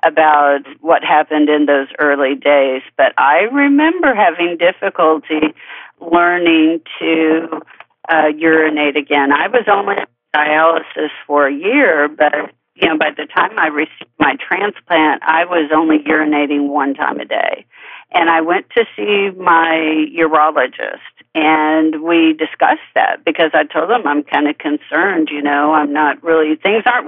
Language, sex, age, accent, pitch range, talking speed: English, female, 50-69, American, 155-190 Hz, 155 wpm